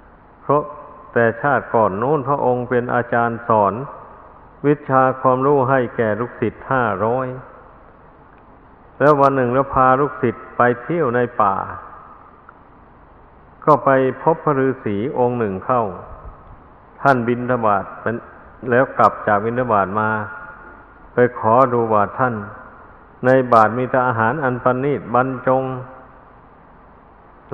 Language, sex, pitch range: Thai, male, 115-135 Hz